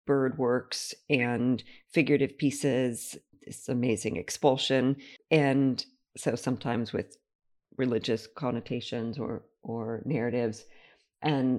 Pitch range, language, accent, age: 125-145 Hz, English, American, 50-69